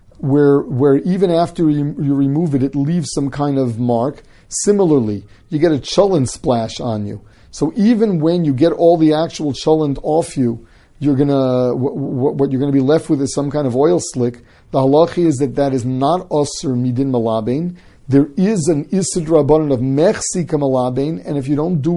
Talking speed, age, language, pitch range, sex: 195 wpm, 40-59, English, 130-155 Hz, male